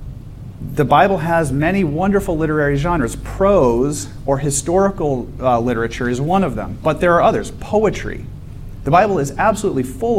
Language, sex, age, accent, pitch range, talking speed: English, male, 40-59, American, 120-165 Hz, 155 wpm